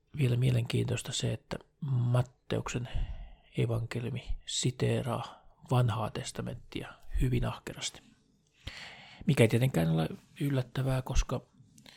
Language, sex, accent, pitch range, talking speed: Finnish, male, native, 115-140 Hz, 85 wpm